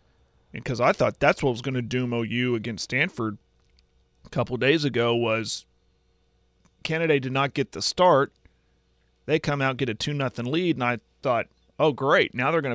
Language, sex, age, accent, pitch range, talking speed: English, male, 40-59, American, 110-140 Hz, 195 wpm